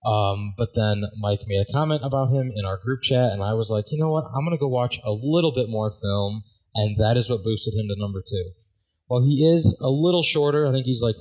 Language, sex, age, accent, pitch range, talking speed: English, male, 20-39, American, 105-125 Hz, 260 wpm